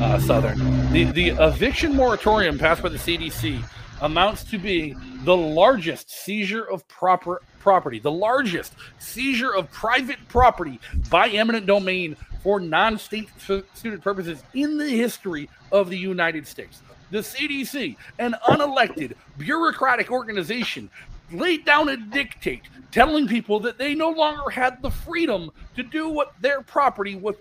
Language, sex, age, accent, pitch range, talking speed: English, male, 40-59, American, 170-265 Hz, 140 wpm